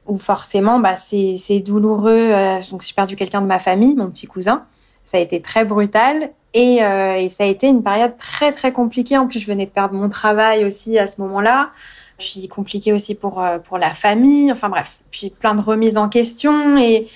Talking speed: 215 wpm